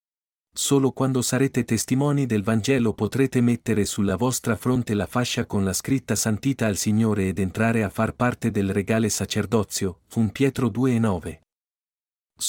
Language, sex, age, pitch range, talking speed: Italian, male, 50-69, 105-135 Hz, 145 wpm